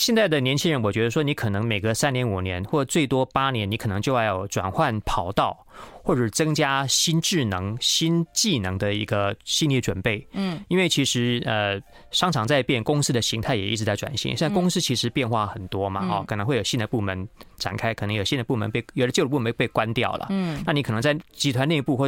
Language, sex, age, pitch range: Chinese, male, 30-49, 110-165 Hz